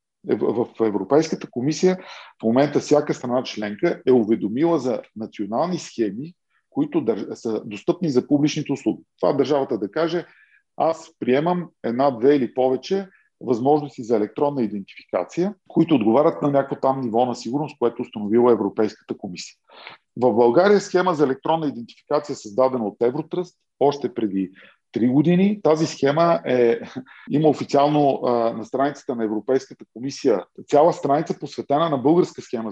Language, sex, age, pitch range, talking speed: Bulgarian, male, 40-59, 115-160 Hz, 135 wpm